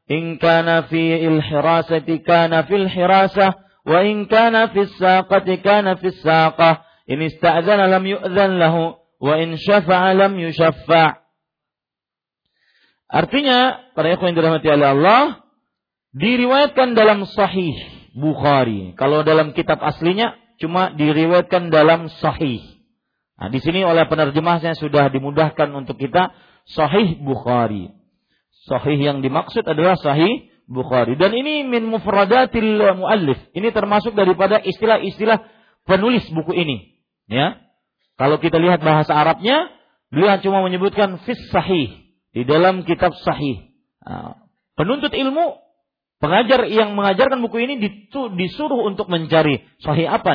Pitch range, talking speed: 155-210 Hz, 110 wpm